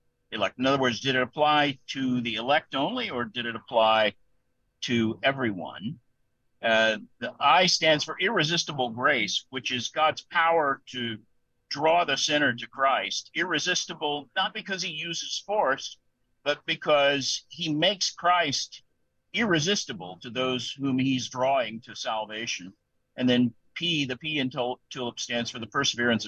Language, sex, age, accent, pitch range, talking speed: English, male, 50-69, American, 120-155 Hz, 150 wpm